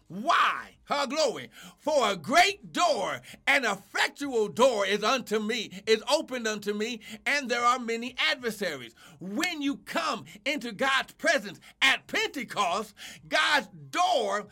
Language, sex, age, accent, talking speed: English, male, 60-79, American, 130 wpm